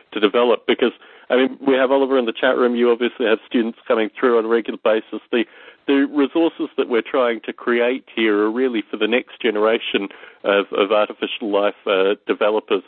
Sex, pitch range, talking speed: male, 110-150 Hz, 200 wpm